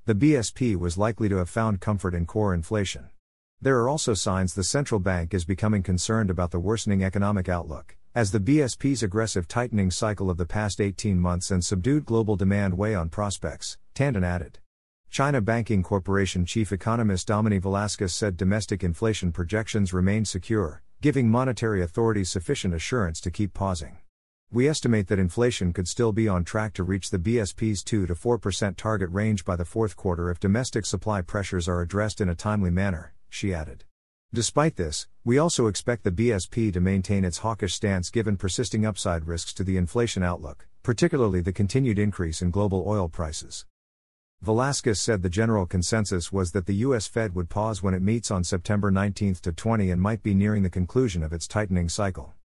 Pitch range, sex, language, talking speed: 90-110 Hz, male, English, 175 wpm